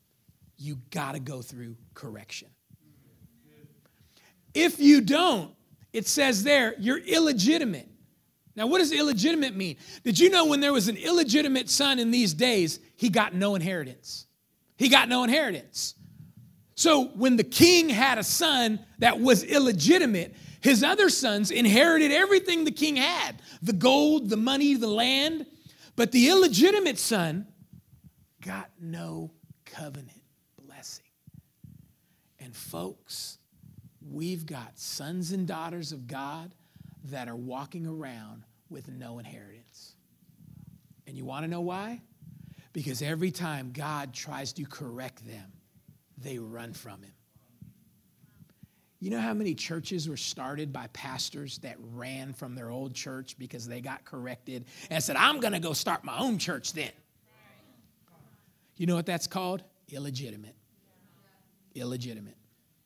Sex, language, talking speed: male, English, 135 wpm